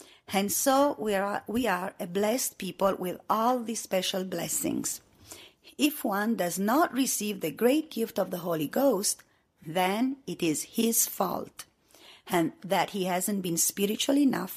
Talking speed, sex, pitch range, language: 155 wpm, female, 185-250 Hz, English